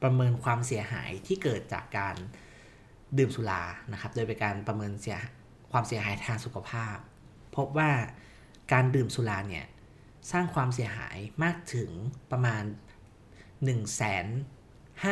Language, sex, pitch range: Thai, male, 110-135 Hz